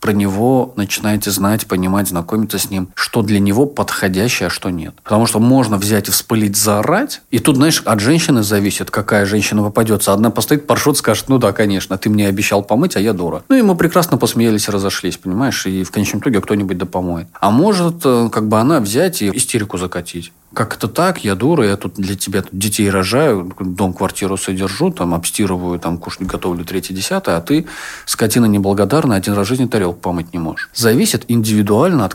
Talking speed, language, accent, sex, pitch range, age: 190 wpm, Russian, native, male, 95-115 Hz, 40-59